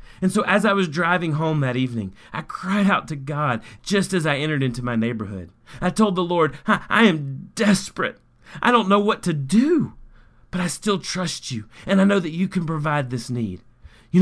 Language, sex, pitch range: English, male, 125-180 Hz